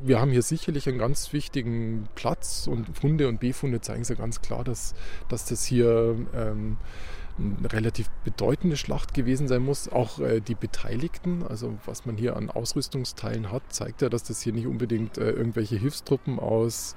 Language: German